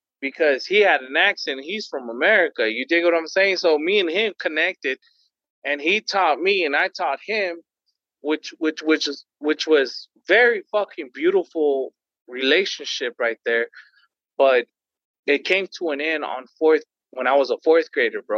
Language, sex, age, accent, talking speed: English, male, 30-49, American, 175 wpm